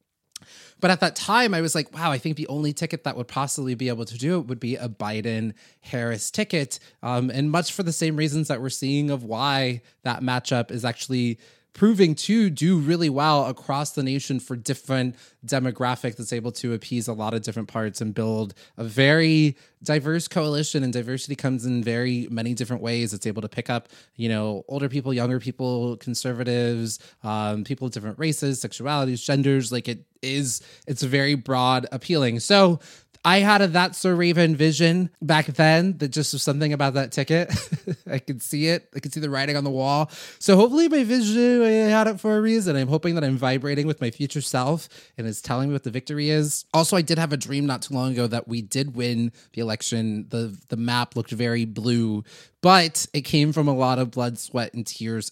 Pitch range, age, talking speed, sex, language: 120-155 Hz, 20-39, 205 wpm, male, English